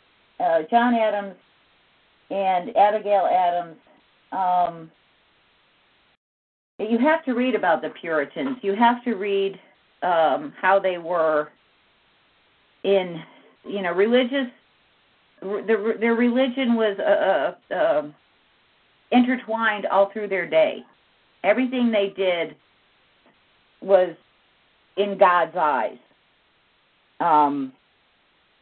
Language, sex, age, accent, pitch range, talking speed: English, female, 50-69, American, 175-235 Hz, 95 wpm